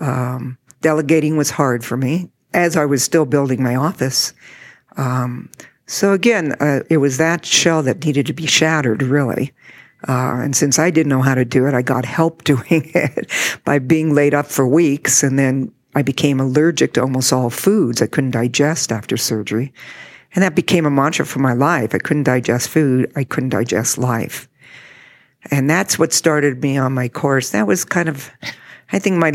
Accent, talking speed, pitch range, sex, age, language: American, 190 wpm, 130-165 Hz, female, 60-79, English